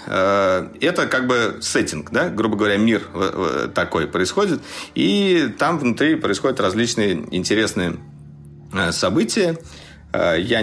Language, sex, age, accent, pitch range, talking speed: Russian, male, 40-59, native, 90-110 Hz, 100 wpm